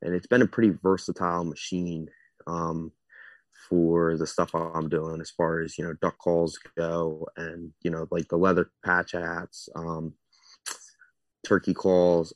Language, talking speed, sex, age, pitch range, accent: English, 155 wpm, male, 20-39, 80-95 Hz, American